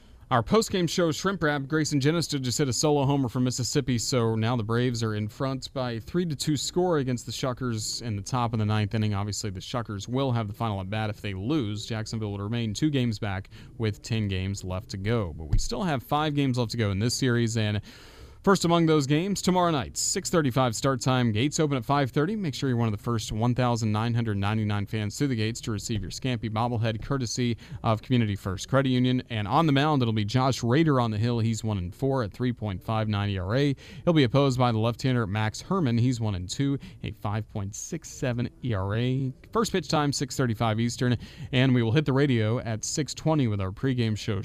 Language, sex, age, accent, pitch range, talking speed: English, male, 30-49, American, 110-140 Hz, 210 wpm